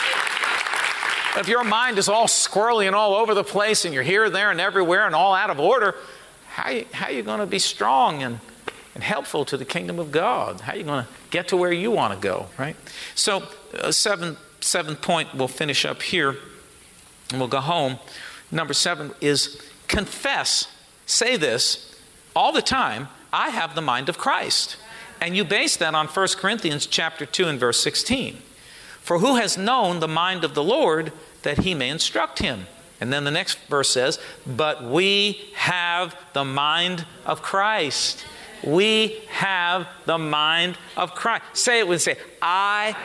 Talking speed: 185 wpm